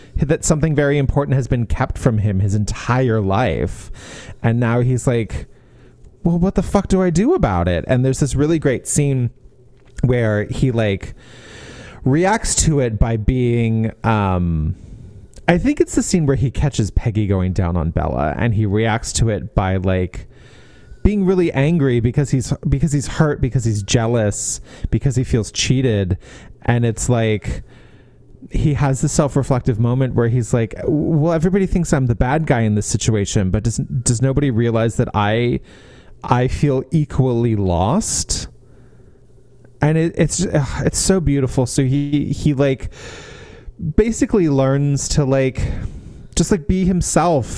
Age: 30-49